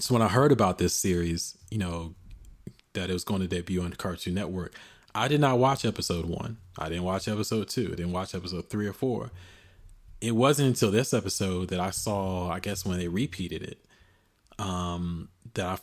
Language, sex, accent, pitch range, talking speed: English, male, American, 90-105 Hz, 200 wpm